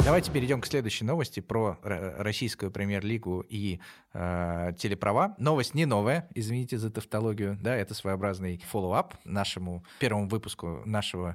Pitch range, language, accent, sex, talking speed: 90-115 Hz, Russian, native, male, 125 wpm